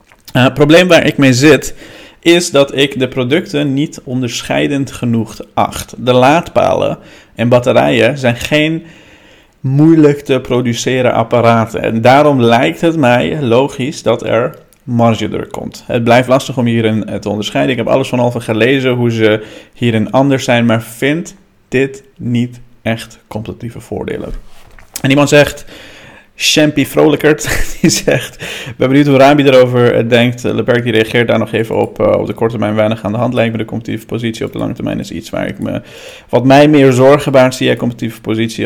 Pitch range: 115-135 Hz